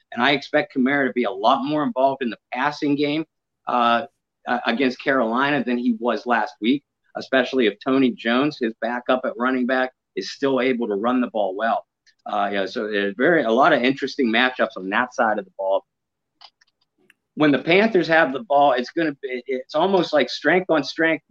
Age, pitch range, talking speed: 50-69, 115-145 Hz, 195 wpm